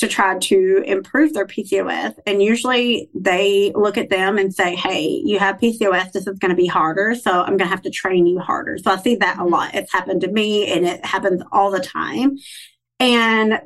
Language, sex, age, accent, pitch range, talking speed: English, female, 30-49, American, 185-220 Hz, 220 wpm